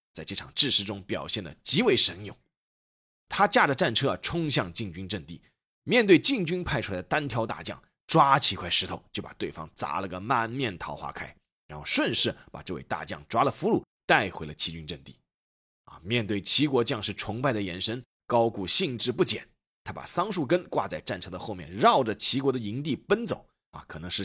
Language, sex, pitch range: Chinese, male, 90-140 Hz